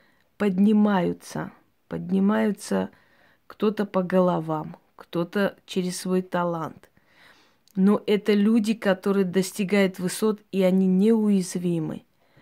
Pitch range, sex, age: 180-210 Hz, female, 20-39